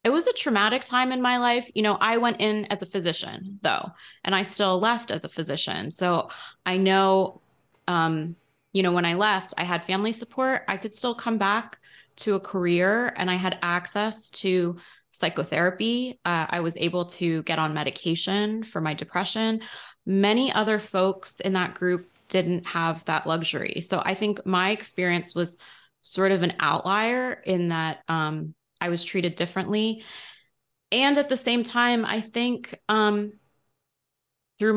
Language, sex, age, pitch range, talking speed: English, female, 20-39, 175-215 Hz, 170 wpm